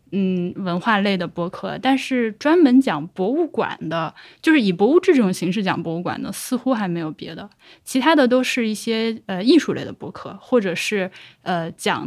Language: Chinese